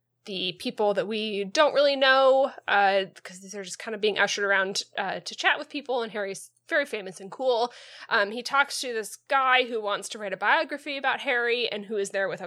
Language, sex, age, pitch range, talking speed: English, female, 20-39, 190-245 Hz, 225 wpm